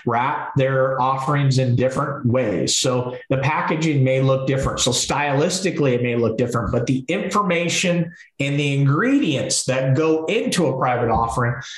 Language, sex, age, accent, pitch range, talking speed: English, male, 40-59, American, 125-160 Hz, 155 wpm